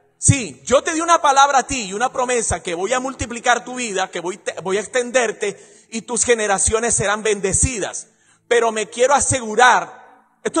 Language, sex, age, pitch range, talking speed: English, male, 40-59, 195-270 Hz, 180 wpm